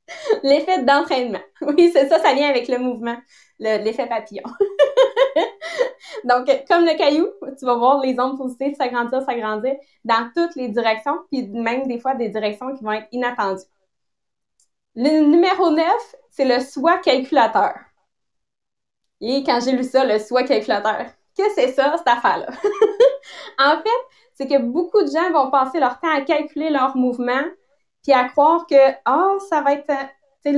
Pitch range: 240-295 Hz